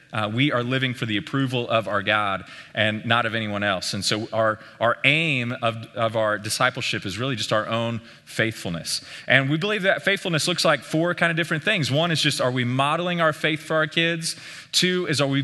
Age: 30-49